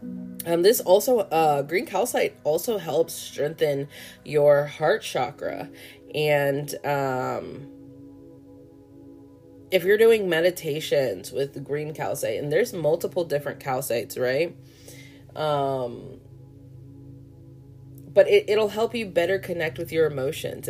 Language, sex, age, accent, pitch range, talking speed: English, female, 20-39, American, 130-165 Hz, 115 wpm